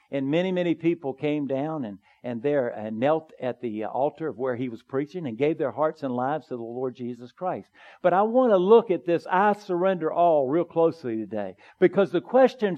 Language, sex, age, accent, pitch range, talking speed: English, male, 50-69, American, 125-170 Hz, 215 wpm